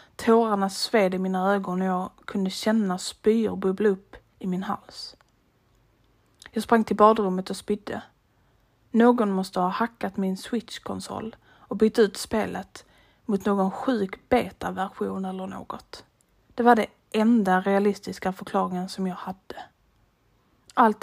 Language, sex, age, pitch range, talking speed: Swedish, female, 30-49, 185-220 Hz, 135 wpm